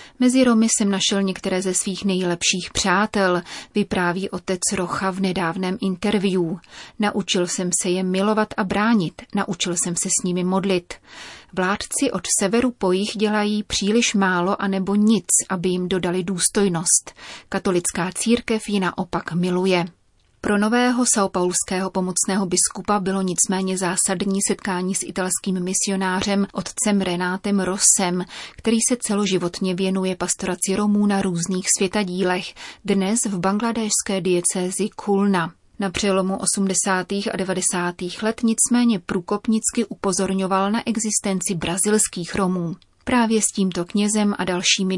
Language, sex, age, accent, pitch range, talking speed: Czech, female, 30-49, native, 185-205 Hz, 125 wpm